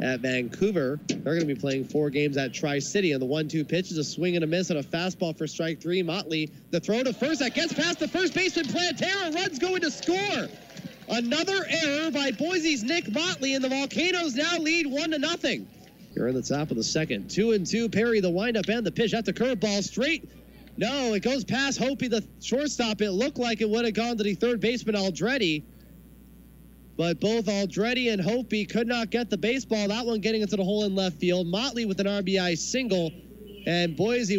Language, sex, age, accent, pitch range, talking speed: English, male, 30-49, American, 180-230 Hz, 210 wpm